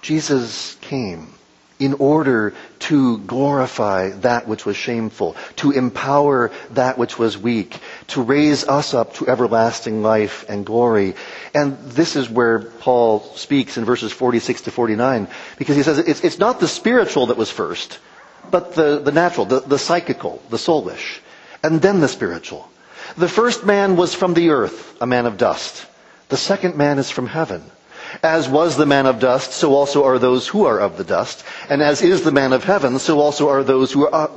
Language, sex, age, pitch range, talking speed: English, male, 40-59, 115-150 Hz, 185 wpm